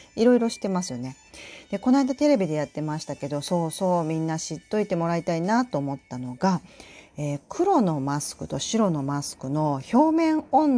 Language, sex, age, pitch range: Japanese, female, 40-59, 140-210 Hz